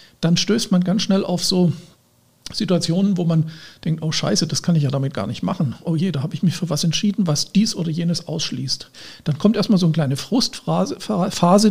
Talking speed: 215 wpm